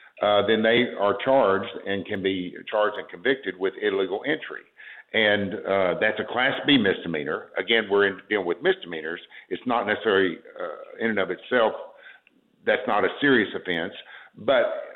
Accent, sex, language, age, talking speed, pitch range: American, male, English, 60-79, 160 wpm, 95-125 Hz